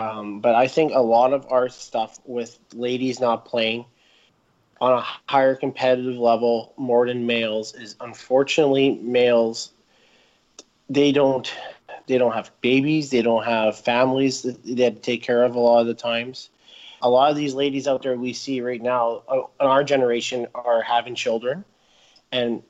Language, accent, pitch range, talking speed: English, American, 120-140 Hz, 170 wpm